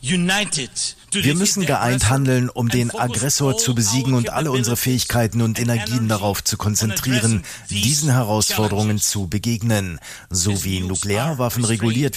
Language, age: German, 40-59